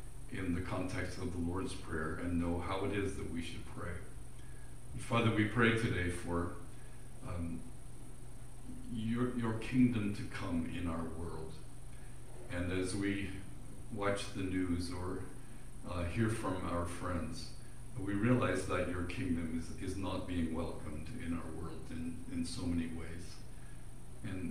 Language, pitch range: English, 85-120 Hz